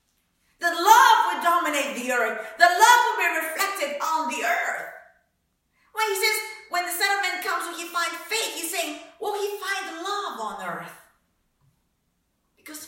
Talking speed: 165 wpm